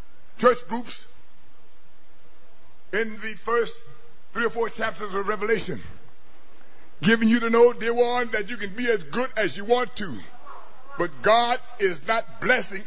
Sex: male